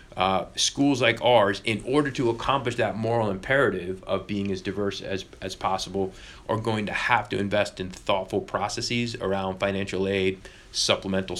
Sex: male